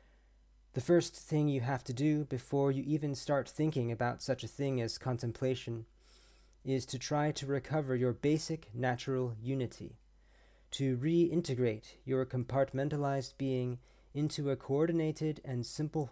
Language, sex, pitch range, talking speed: English, male, 120-140 Hz, 140 wpm